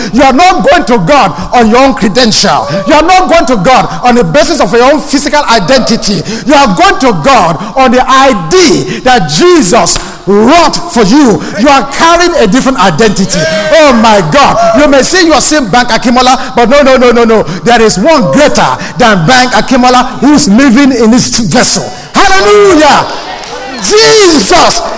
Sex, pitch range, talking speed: male, 245-350 Hz, 185 wpm